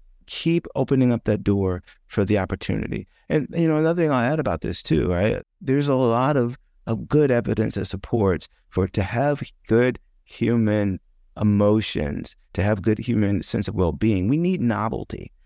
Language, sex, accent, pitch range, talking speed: English, male, American, 95-115 Hz, 170 wpm